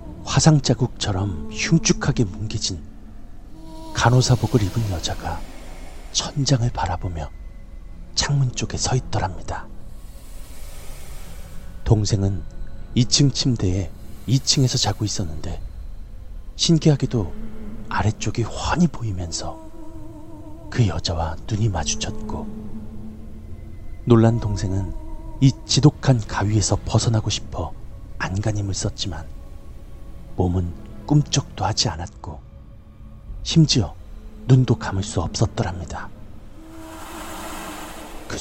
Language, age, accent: Korean, 40-59, native